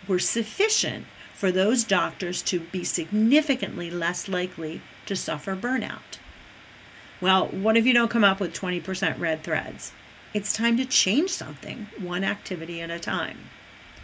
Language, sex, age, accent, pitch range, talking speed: English, female, 40-59, American, 180-240 Hz, 145 wpm